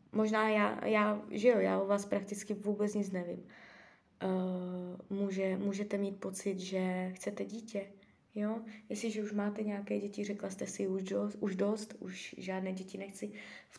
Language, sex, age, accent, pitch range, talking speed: Czech, female, 20-39, native, 195-225 Hz, 165 wpm